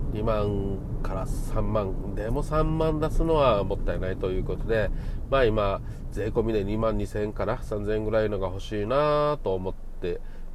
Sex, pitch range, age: male, 95-120 Hz, 40-59